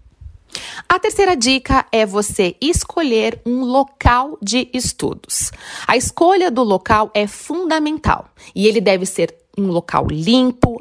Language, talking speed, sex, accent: Portuguese, 130 wpm, female, Brazilian